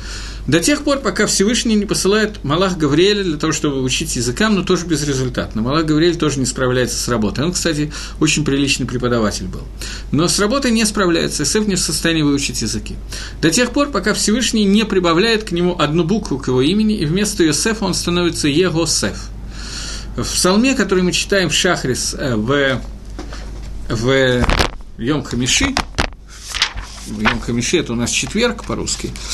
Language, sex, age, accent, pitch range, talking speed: Russian, male, 50-69, native, 135-200 Hz, 155 wpm